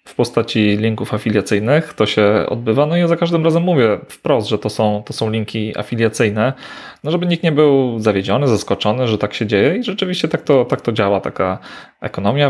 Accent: native